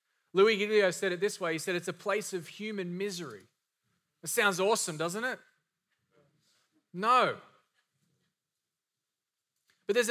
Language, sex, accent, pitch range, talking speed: English, male, Australian, 185-210 Hz, 130 wpm